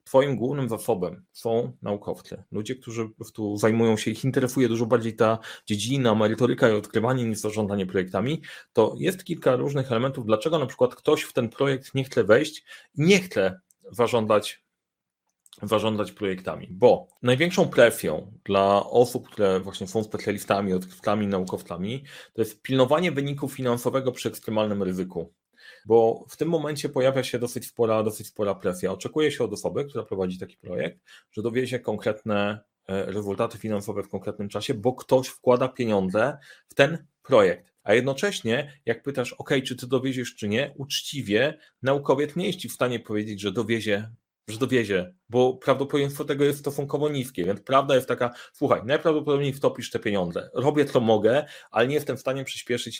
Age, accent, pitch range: 30-49, native, 110-140 Hz